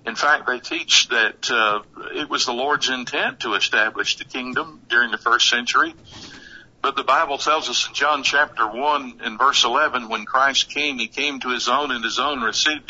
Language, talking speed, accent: English, 200 wpm, American